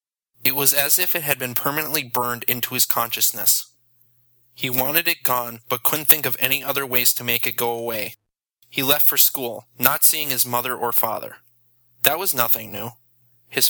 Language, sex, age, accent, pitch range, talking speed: English, male, 20-39, American, 120-135 Hz, 190 wpm